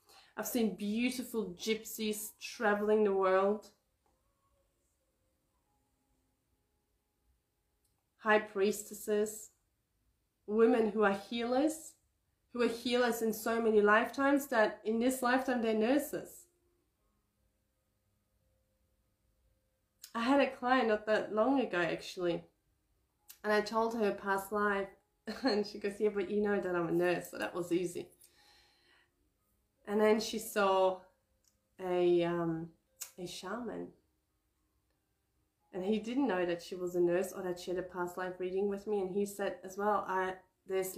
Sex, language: female, English